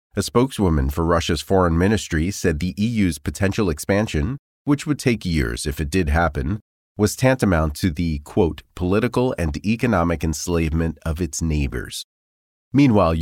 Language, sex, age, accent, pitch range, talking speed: English, male, 30-49, American, 75-100 Hz, 145 wpm